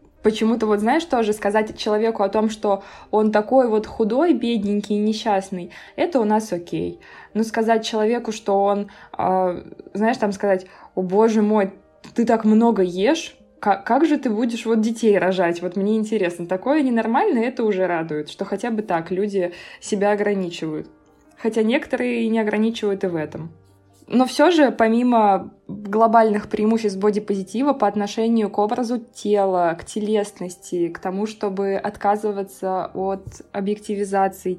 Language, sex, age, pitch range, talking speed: Russian, female, 20-39, 195-225 Hz, 145 wpm